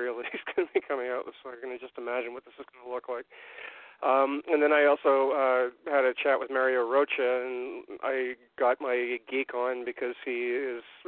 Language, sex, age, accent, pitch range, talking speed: English, male, 40-59, American, 125-140 Hz, 215 wpm